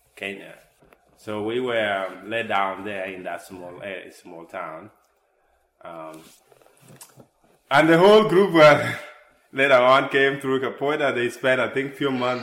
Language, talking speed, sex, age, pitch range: English, 155 wpm, male, 20-39, 95-125 Hz